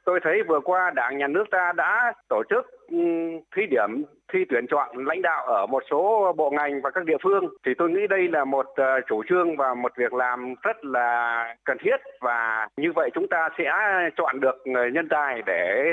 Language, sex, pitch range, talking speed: Vietnamese, male, 165-235 Hz, 205 wpm